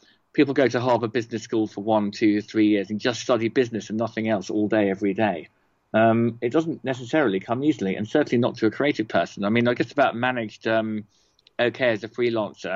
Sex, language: male, English